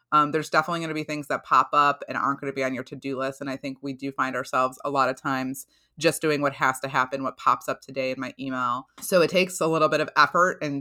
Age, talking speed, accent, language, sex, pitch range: 30-49, 290 wpm, American, English, female, 135-155 Hz